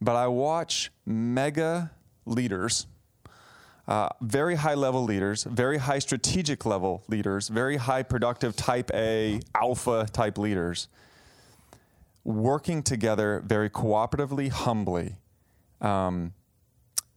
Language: English